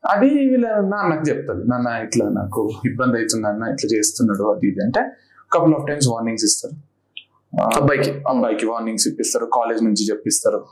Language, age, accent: Telugu, 30-49, native